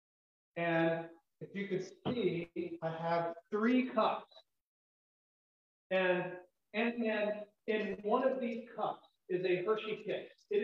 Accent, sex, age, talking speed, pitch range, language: American, male, 40-59, 120 wpm, 165-220 Hz, English